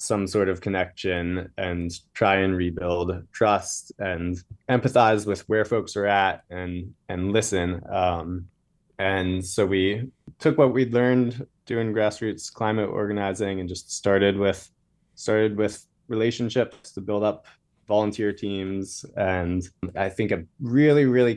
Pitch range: 95-110 Hz